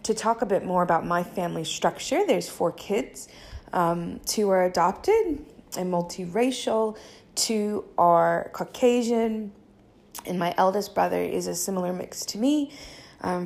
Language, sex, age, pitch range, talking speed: English, female, 20-39, 170-225 Hz, 145 wpm